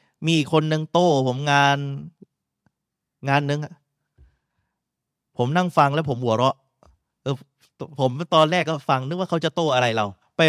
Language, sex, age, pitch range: Thai, male, 30-49, 125-155 Hz